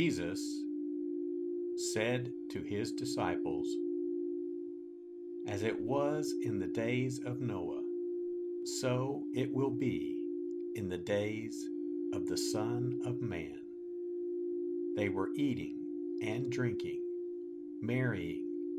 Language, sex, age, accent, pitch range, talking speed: English, male, 50-69, American, 325-345 Hz, 100 wpm